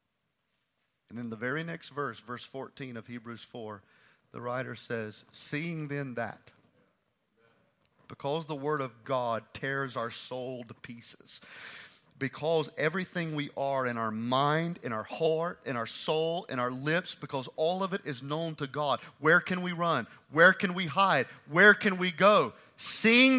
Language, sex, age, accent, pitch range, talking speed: English, male, 40-59, American, 125-195 Hz, 165 wpm